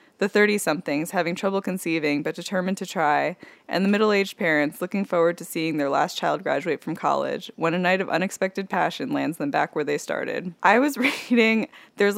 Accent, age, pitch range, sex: American, 10-29, 160-200 Hz, female